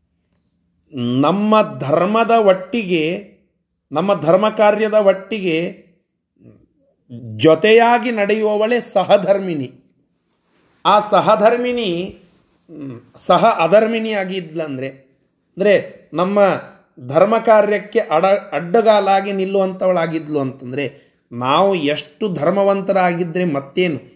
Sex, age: male, 40-59